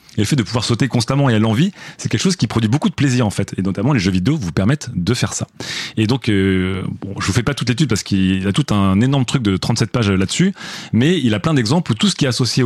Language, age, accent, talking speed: French, 30-49, French, 295 wpm